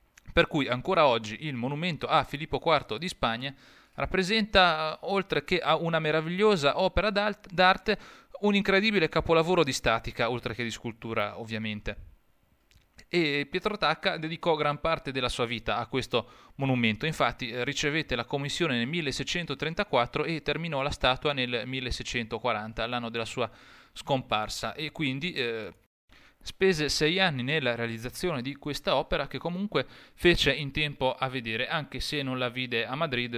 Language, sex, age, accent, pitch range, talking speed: Italian, male, 30-49, native, 115-155 Hz, 145 wpm